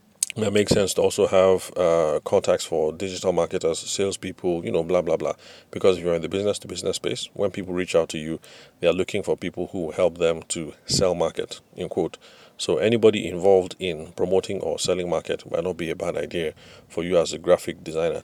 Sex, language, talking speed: male, English, 205 wpm